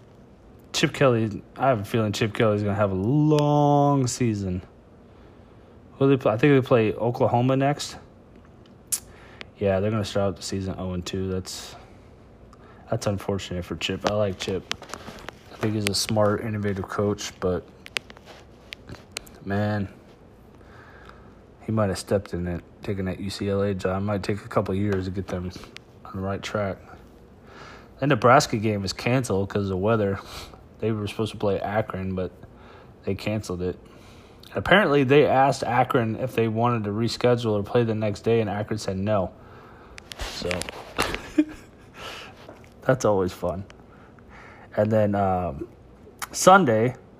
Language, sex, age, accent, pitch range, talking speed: English, male, 20-39, American, 95-120 Hz, 150 wpm